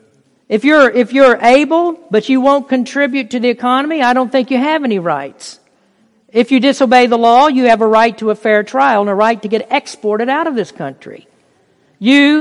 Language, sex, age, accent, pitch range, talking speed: English, female, 50-69, American, 190-255 Hz, 210 wpm